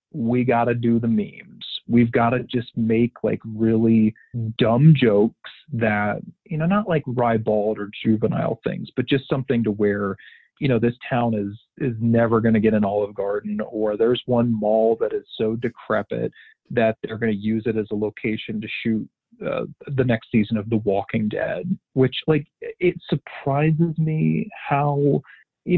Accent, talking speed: American, 175 wpm